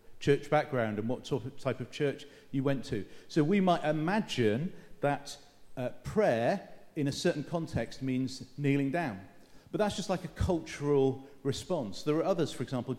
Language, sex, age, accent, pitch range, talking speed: English, male, 40-59, British, 125-155 Hz, 165 wpm